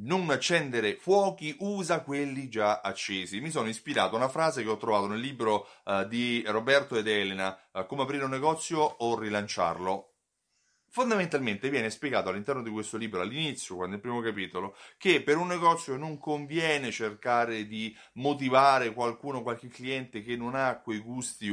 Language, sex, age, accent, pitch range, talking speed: Italian, male, 30-49, native, 110-150 Hz, 160 wpm